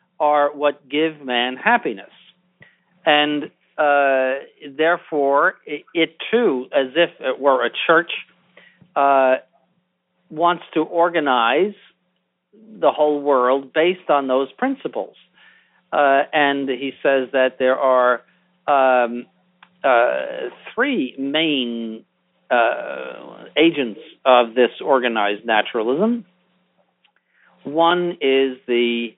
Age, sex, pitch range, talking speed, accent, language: 50-69, male, 120-155 Hz, 100 wpm, American, English